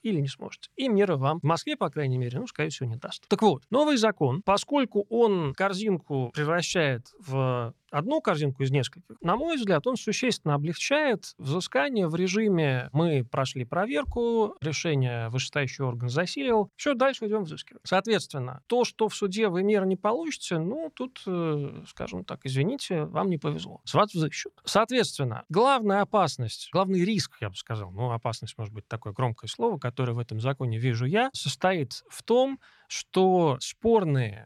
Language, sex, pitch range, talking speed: Russian, male, 135-205 Hz, 165 wpm